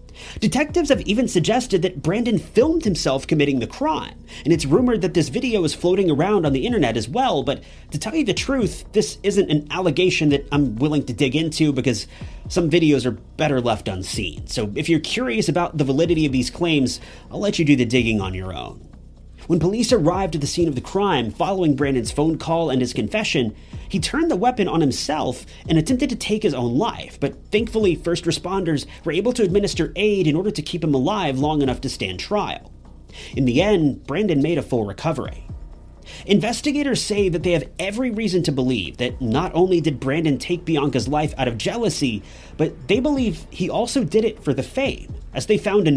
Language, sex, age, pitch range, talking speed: English, male, 30-49, 130-205 Hz, 205 wpm